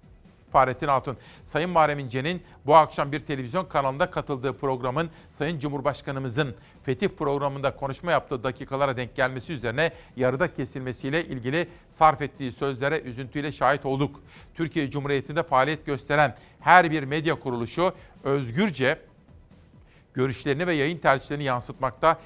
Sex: male